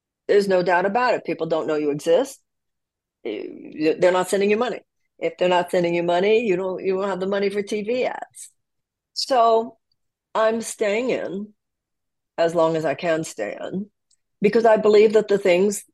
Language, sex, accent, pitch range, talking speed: English, female, American, 165-215 Hz, 180 wpm